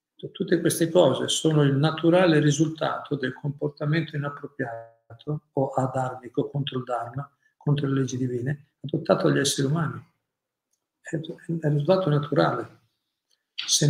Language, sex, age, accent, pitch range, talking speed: Italian, male, 50-69, native, 135-160 Hz, 120 wpm